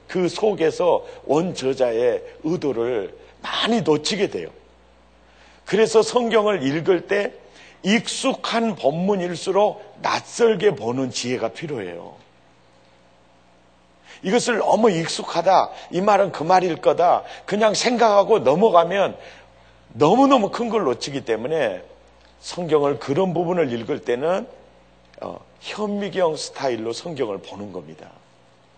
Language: Korean